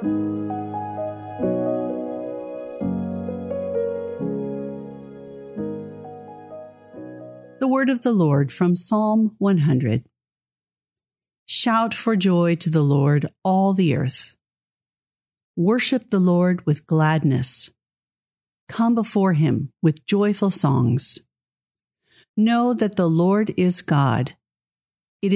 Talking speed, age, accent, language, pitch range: 85 wpm, 50-69, American, English, 130-205 Hz